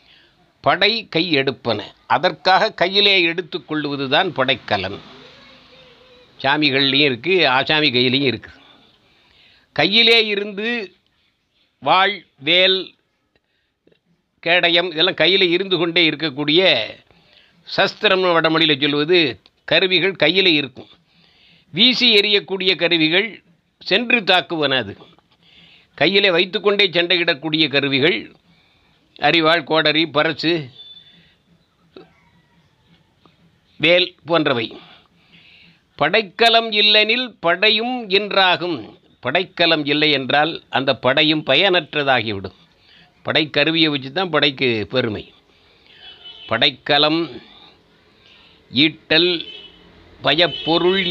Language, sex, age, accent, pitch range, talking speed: Tamil, male, 60-79, native, 145-190 Hz, 75 wpm